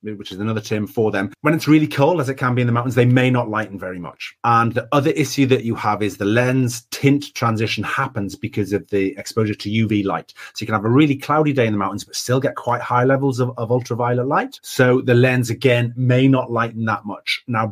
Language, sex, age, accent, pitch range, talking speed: English, male, 30-49, British, 105-135 Hz, 250 wpm